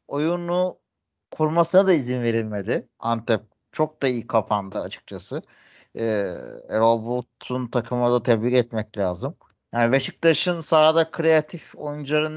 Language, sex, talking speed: Turkish, male, 115 wpm